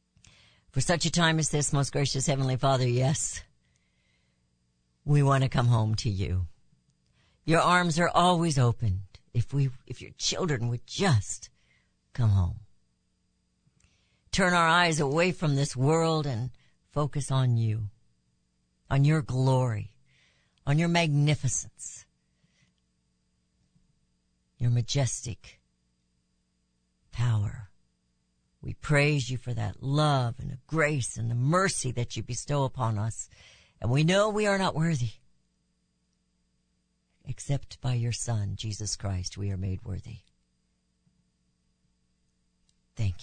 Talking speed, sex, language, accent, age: 120 wpm, female, English, American, 60-79